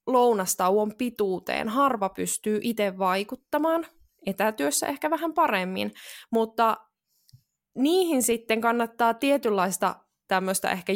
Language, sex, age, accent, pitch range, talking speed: Finnish, female, 20-39, native, 200-280 Hz, 100 wpm